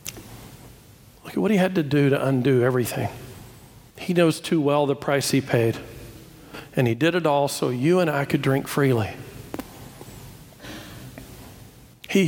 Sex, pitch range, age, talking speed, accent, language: male, 140-185 Hz, 50-69, 140 wpm, American, English